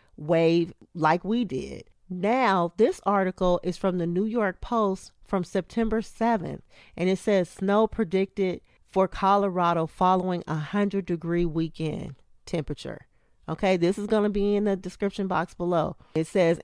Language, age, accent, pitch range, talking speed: English, 40-59, American, 165-205 Hz, 150 wpm